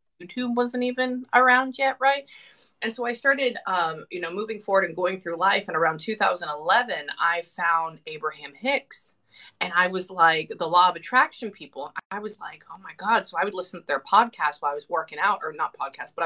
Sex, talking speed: female, 210 wpm